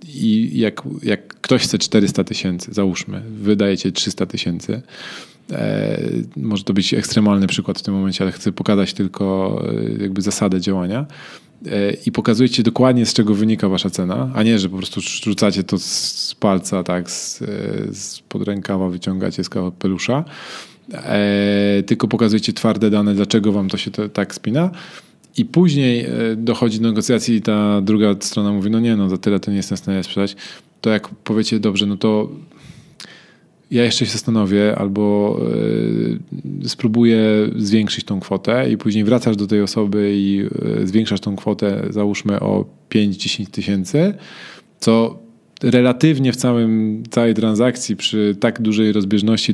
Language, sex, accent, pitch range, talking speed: Polish, male, native, 100-120 Hz, 145 wpm